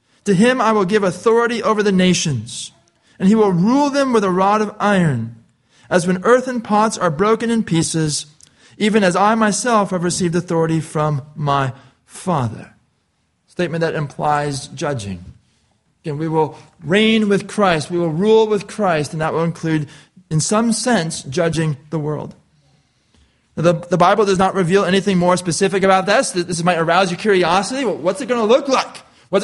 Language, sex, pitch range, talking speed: English, male, 160-215 Hz, 175 wpm